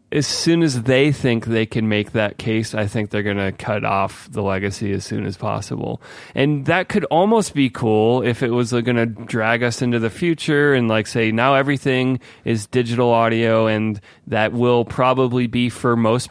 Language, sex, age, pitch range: English, male, 30-49, 110-130 Hz